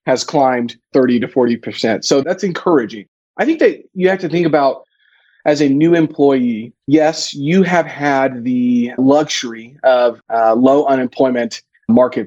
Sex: male